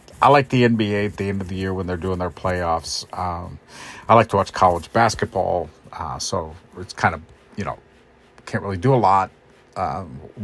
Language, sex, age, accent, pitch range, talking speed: English, male, 50-69, American, 90-120 Hz, 200 wpm